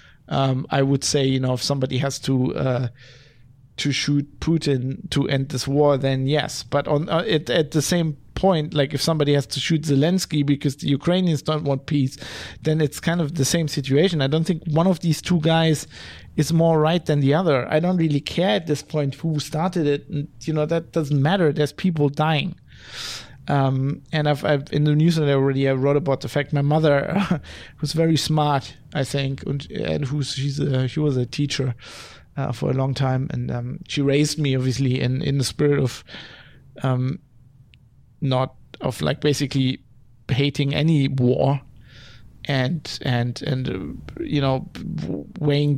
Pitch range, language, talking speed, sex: 130-150 Hz, English, 190 wpm, male